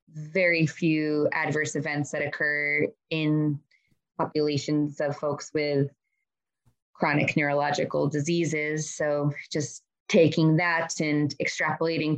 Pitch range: 155-195 Hz